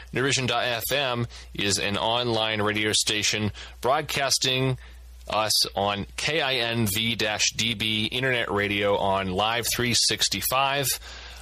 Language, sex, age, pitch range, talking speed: English, male, 30-49, 85-115 Hz, 80 wpm